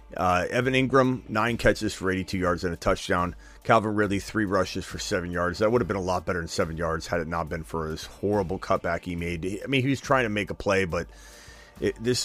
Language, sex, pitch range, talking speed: English, male, 90-115 Hz, 240 wpm